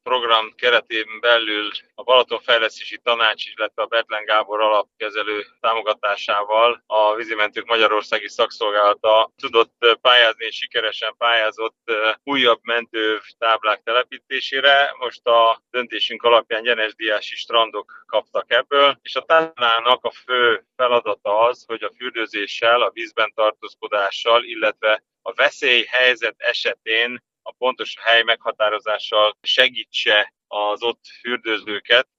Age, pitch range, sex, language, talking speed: 30-49, 110-140 Hz, male, Hungarian, 105 wpm